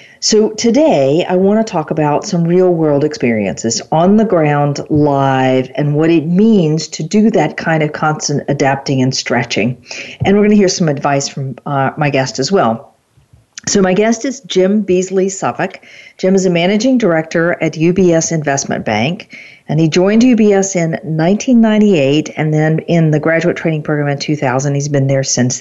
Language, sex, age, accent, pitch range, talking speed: English, female, 50-69, American, 145-185 Hz, 175 wpm